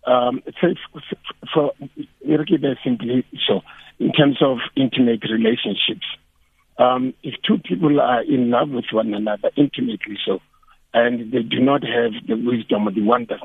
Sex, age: male, 60-79